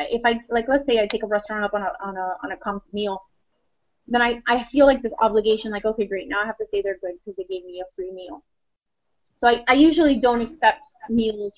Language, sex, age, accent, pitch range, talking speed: English, female, 20-39, American, 205-245 Hz, 255 wpm